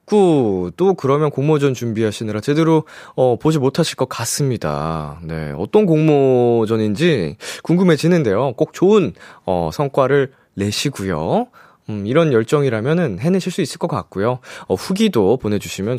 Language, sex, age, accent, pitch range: Korean, male, 20-39, native, 105-175 Hz